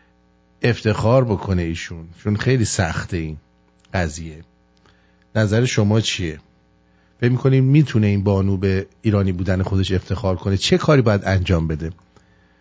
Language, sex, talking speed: English, male, 130 wpm